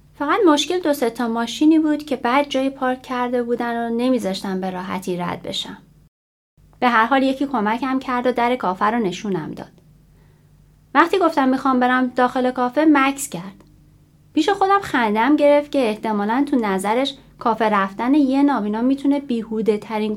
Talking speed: 160 wpm